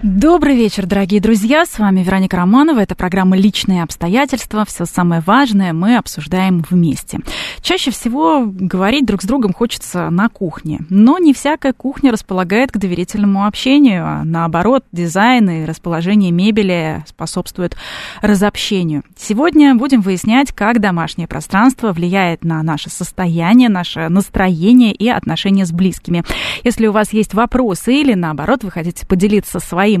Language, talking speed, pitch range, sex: Russian, 140 wpm, 185-250 Hz, female